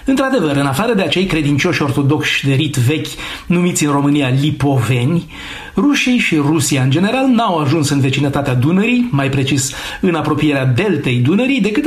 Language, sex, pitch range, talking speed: Romanian, male, 145-200 Hz, 155 wpm